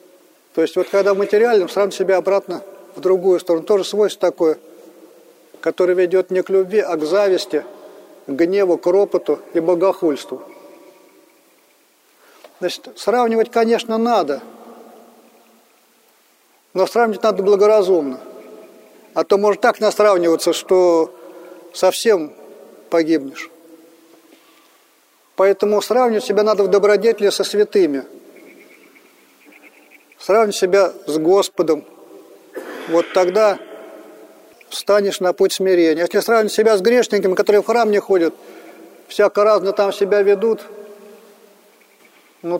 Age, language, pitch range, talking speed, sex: 40-59, Russian, 180-215 Hz, 110 wpm, male